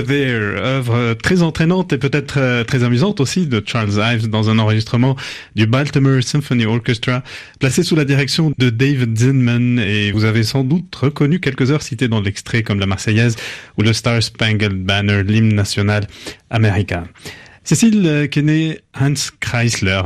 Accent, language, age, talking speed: French, French, 30-49, 155 wpm